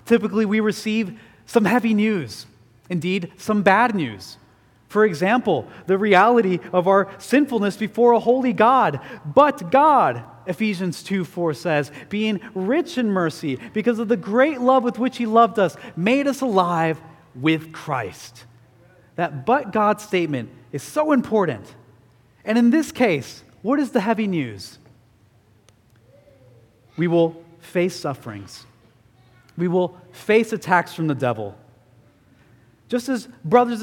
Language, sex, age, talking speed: English, male, 30-49, 135 wpm